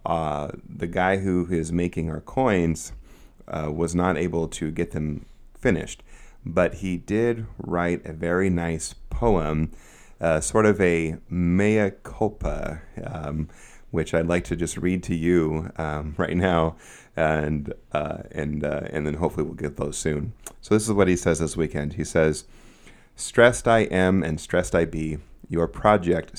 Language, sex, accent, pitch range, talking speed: English, male, American, 80-95 Hz, 165 wpm